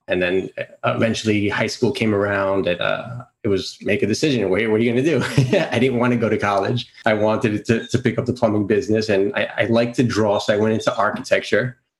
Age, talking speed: 20-39, 240 wpm